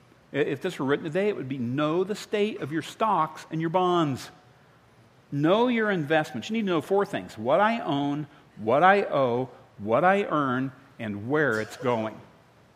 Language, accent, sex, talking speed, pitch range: English, American, male, 185 wpm, 125-185 Hz